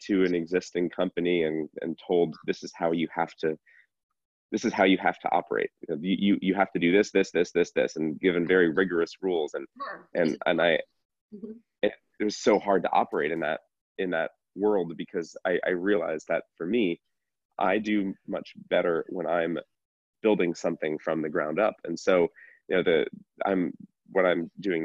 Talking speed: 195 wpm